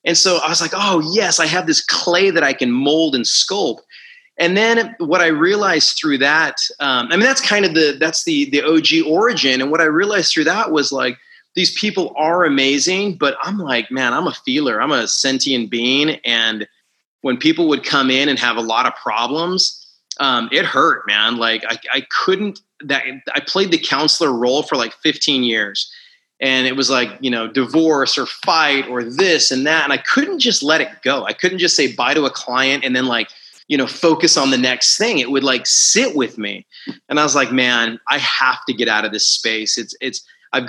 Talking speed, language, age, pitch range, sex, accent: 220 wpm, English, 30-49, 130-180 Hz, male, American